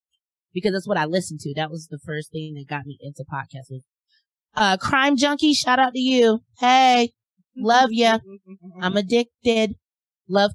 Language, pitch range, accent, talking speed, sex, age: English, 155-220 Hz, American, 165 wpm, female, 30-49